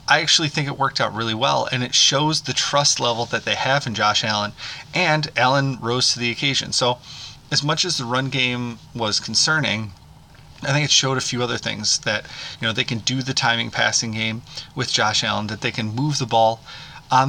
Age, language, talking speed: 30-49, English, 220 wpm